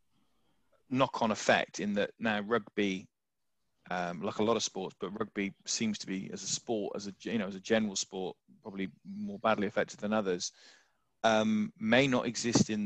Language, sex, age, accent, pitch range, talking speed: English, male, 20-39, British, 100-110 Hz, 180 wpm